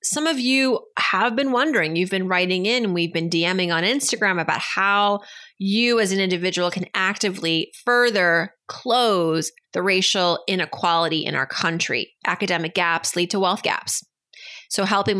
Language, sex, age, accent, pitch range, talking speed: English, female, 30-49, American, 175-230 Hz, 155 wpm